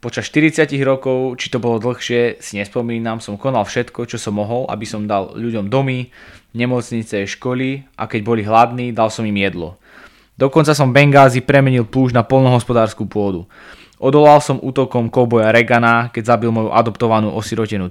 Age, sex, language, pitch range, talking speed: 20-39, male, English, 110-130 Hz, 160 wpm